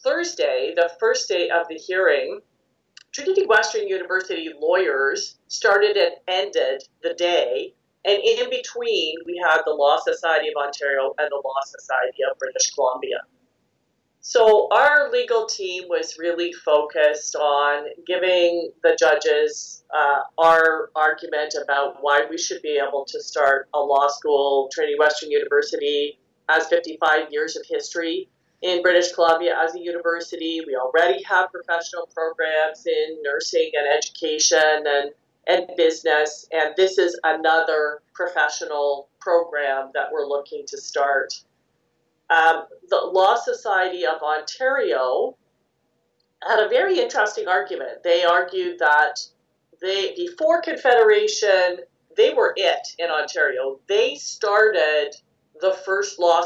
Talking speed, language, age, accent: 130 wpm, English, 40-59, American